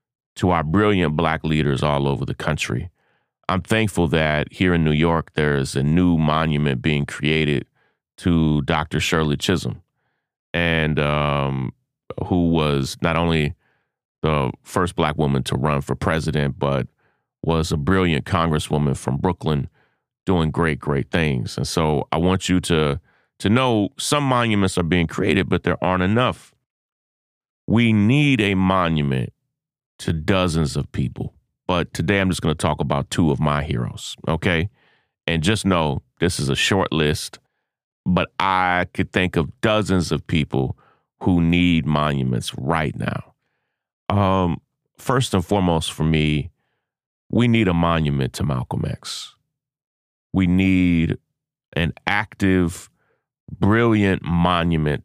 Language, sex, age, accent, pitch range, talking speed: English, male, 30-49, American, 75-95 Hz, 140 wpm